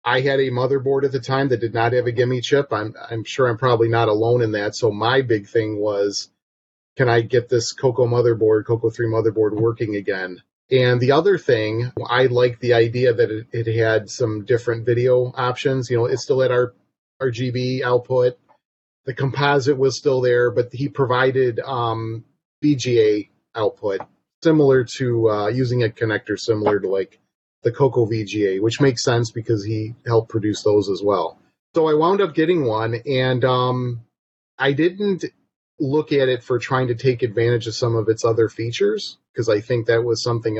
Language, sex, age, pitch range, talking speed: English, male, 30-49, 115-130 Hz, 185 wpm